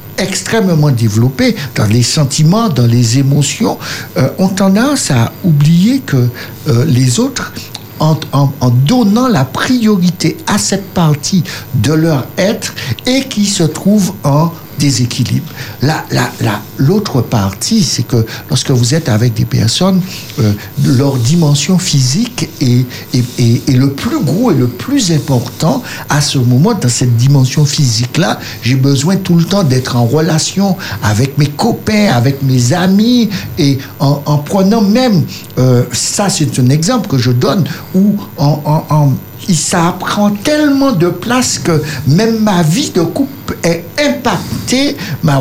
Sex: male